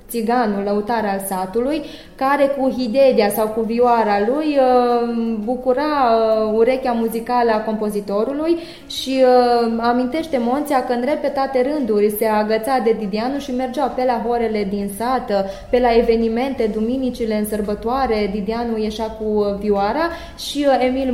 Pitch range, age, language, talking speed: 220-265 Hz, 20-39, Romanian, 130 wpm